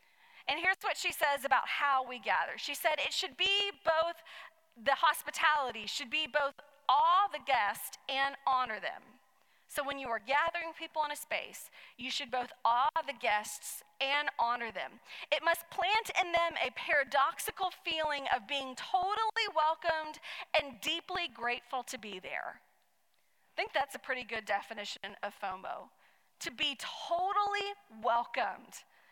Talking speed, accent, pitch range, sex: 155 wpm, American, 250-330 Hz, female